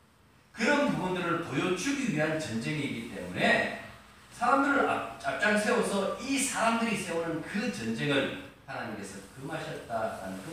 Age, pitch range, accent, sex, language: 40-59, 180-235 Hz, native, male, Korean